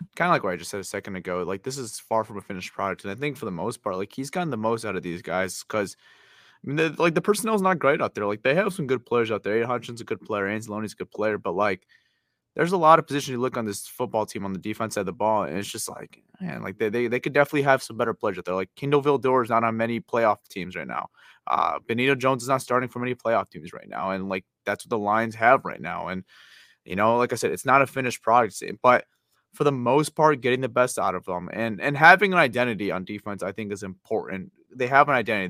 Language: English